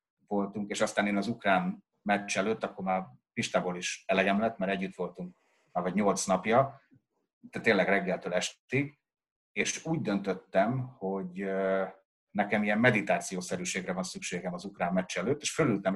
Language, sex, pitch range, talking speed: Hungarian, male, 95-115 Hz, 150 wpm